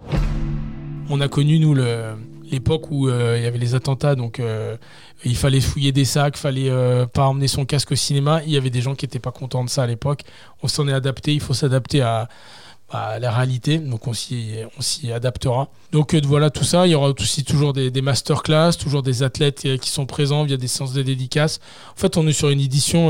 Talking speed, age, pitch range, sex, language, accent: 230 wpm, 20-39, 130-150 Hz, male, French, French